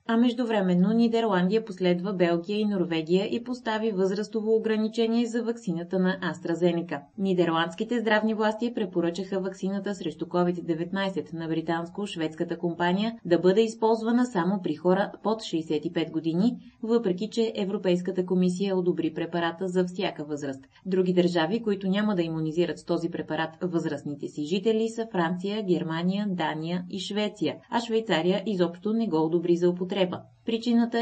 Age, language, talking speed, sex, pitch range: 20-39, Bulgarian, 135 wpm, female, 170-215 Hz